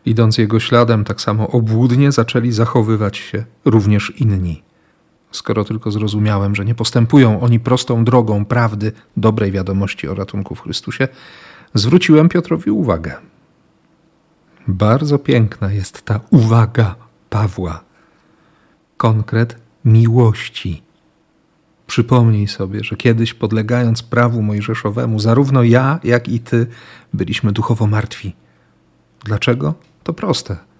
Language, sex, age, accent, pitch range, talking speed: Polish, male, 40-59, native, 105-125 Hz, 110 wpm